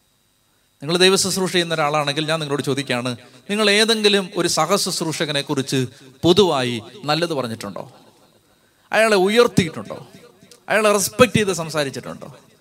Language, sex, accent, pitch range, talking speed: Malayalam, male, native, 165-210 Hz, 95 wpm